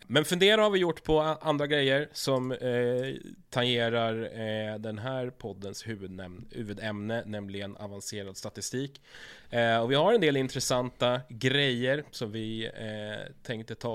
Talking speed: 140 wpm